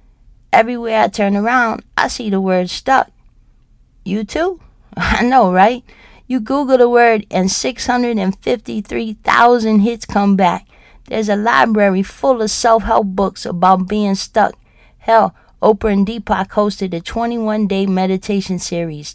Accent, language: American, English